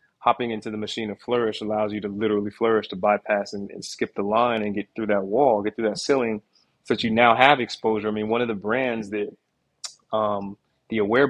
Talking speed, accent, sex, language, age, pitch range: 230 wpm, American, male, English, 20-39, 105-120 Hz